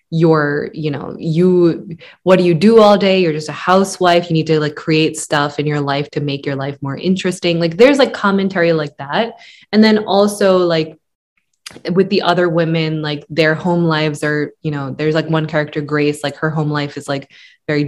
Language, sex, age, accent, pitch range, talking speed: English, female, 20-39, American, 150-180 Hz, 210 wpm